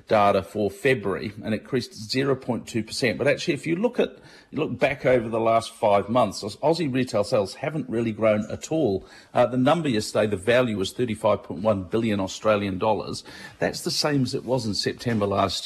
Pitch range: 110-135 Hz